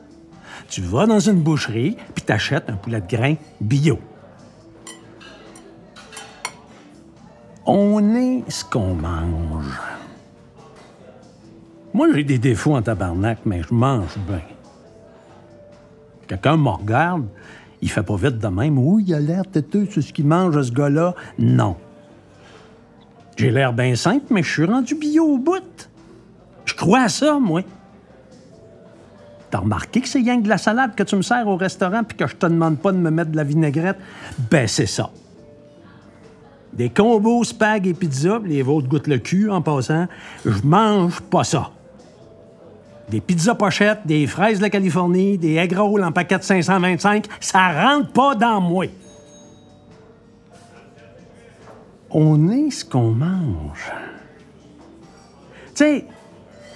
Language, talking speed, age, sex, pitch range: French, 140 wpm, 60-79, male, 135-205 Hz